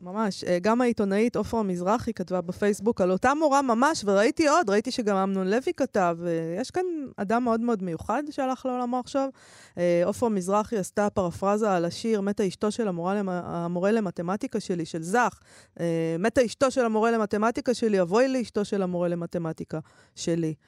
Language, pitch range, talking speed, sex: Hebrew, 175-220 Hz, 155 wpm, female